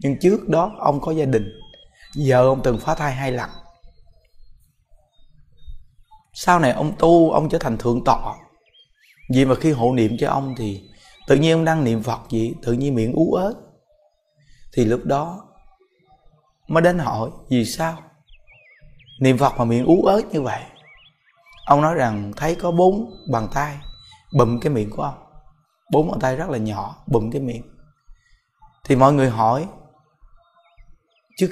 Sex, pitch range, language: male, 120-165 Hz, Vietnamese